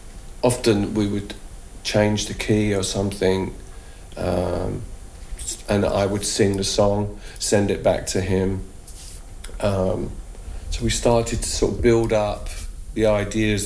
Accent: British